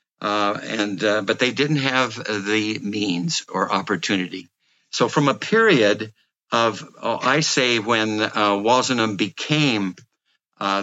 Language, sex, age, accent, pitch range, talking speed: English, male, 60-79, American, 105-135 Hz, 135 wpm